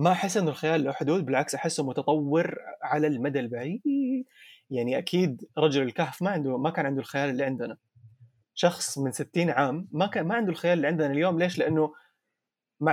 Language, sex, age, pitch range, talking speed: Arabic, male, 20-39, 135-185 Hz, 180 wpm